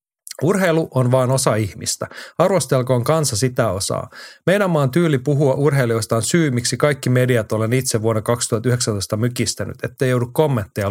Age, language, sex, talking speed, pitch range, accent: 30-49, Finnish, male, 150 wpm, 115-145 Hz, native